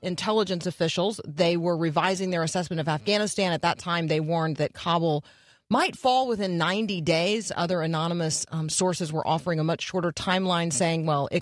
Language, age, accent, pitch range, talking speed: English, 40-59, American, 140-175 Hz, 180 wpm